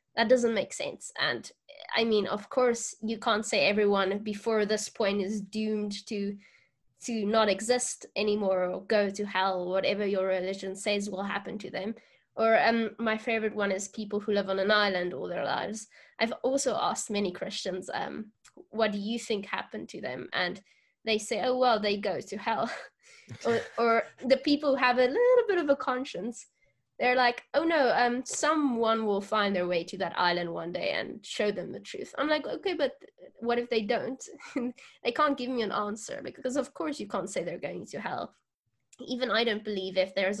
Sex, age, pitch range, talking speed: female, 10-29, 195-240 Hz, 200 wpm